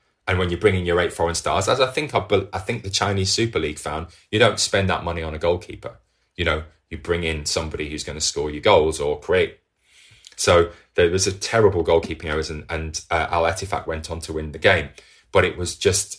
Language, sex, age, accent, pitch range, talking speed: English, male, 20-39, British, 80-100 Hz, 235 wpm